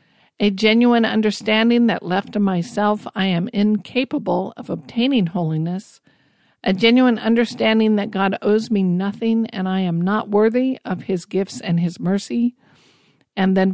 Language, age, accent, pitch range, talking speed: English, 50-69, American, 185-225 Hz, 150 wpm